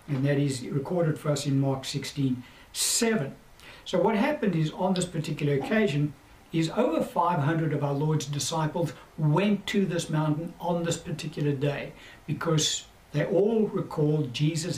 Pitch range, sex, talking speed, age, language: 145-175 Hz, male, 150 wpm, 60-79, English